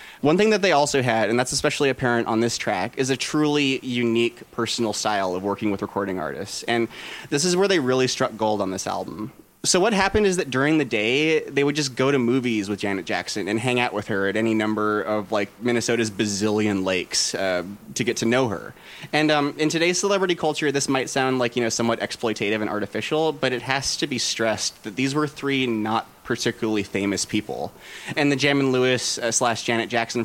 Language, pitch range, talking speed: English, 110-140 Hz, 215 wpm